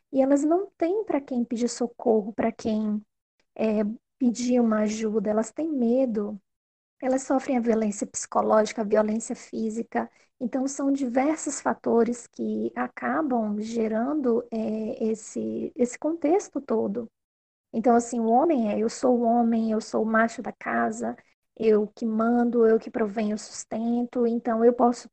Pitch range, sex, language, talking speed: 220-275 Hz, female, Portuguese, 150 wpm